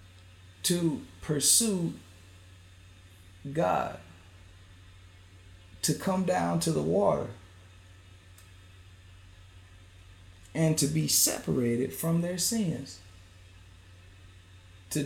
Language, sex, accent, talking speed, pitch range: English, male, American, 70 wpm, 95-145 Hz